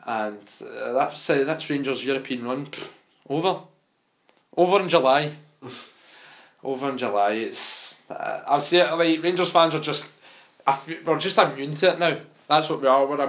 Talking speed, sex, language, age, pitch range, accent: 170 wpm, male, English, 20-39, 120-145 Hz, British